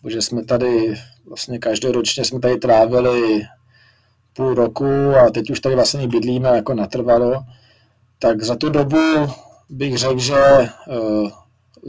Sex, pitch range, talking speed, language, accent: male, 120-130 Hz, 130 wpm, Czech, native